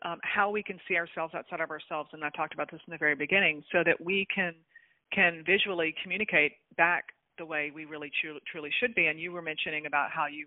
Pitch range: 155-190 Hz